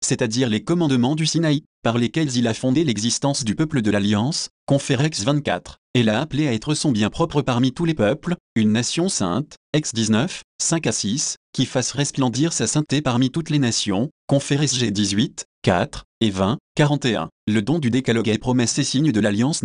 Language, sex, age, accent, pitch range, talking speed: French, male, 30-49, French, 110-150 Hz, 190 wpm